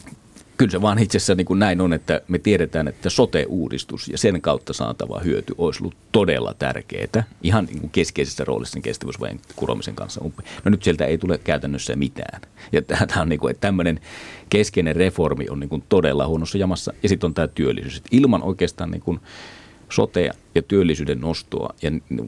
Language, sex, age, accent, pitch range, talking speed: Finnish, male, 40-59, native, 70-95 Hz, 180 wpm